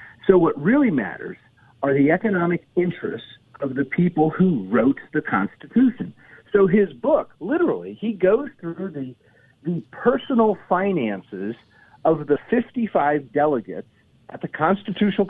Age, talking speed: 50-69, 130 wpm